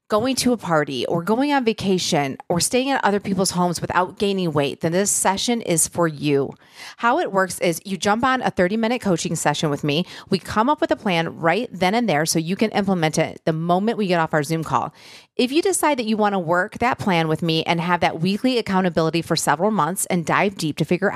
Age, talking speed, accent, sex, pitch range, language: 30-49, 240 wpm, American, female, 165-225 Hz, English